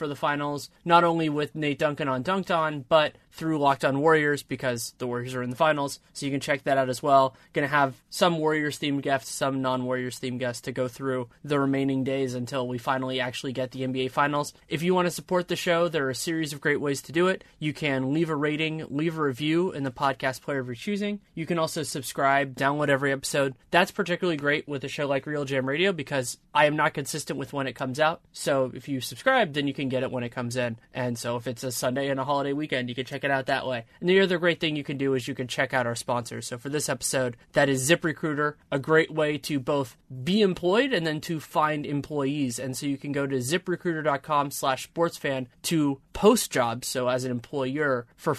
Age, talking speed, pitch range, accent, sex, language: 20-39, 240 wpm, 130-160 Hz, American, male, English